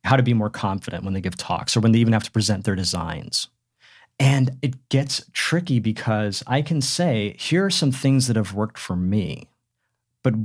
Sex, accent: male, American